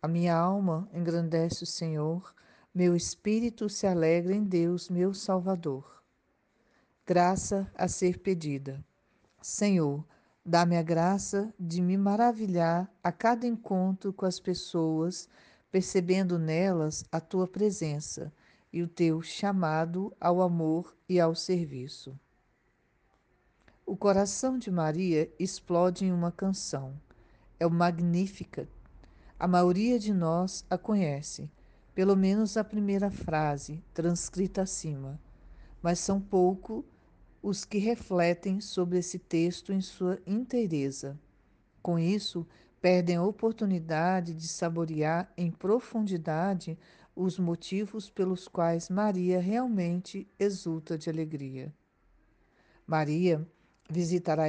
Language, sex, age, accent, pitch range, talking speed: Portuguese, female, 50-69, Brazilian, 165-190 Hz, 110 wpm